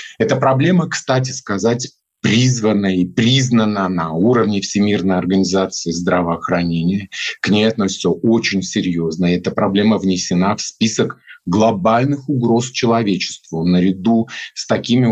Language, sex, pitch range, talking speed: Russian, male, 105-135 Hz, 110 wpm